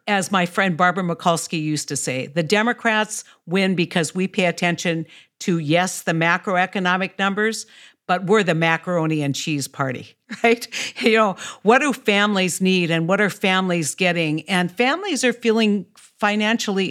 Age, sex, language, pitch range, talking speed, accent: 60-79, female, English, 170-210 Hz, 155 wpm, American